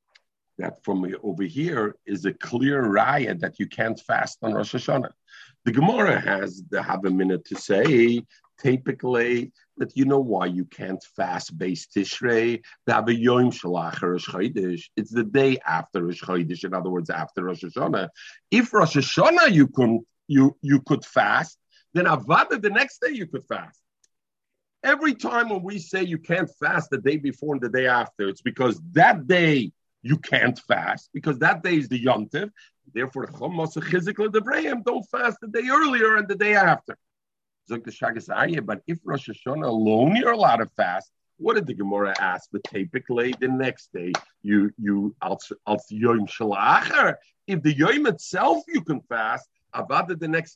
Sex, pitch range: male, 115-175 Hz